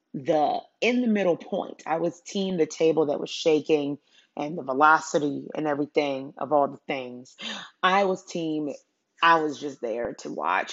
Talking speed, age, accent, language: 175 wpm, 30-49, American, English